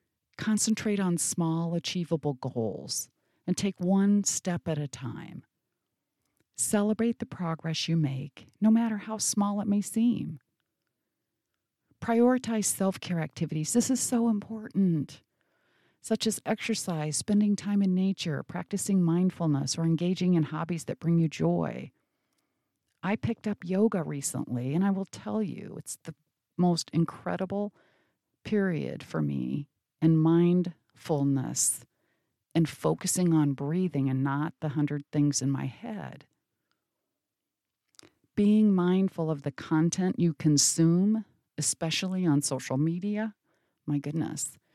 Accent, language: American, English